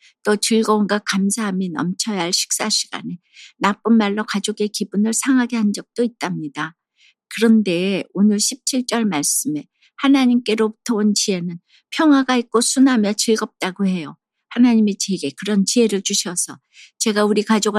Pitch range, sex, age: 190-230 Hz, female, 60-79